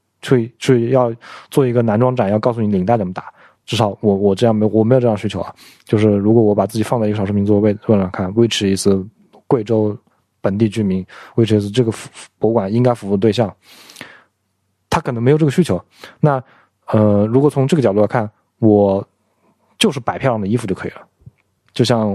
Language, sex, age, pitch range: Chinese, male, 20-39, 100-130 Hz